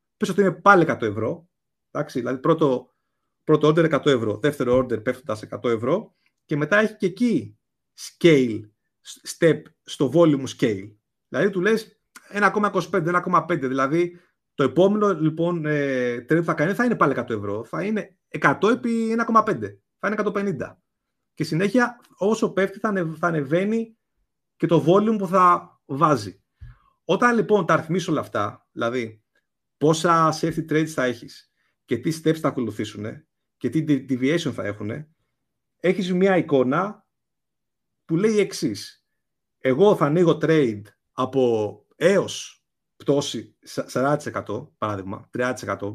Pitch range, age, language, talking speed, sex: 125-185 Hz, 30-49, Greek, 135 wpm, male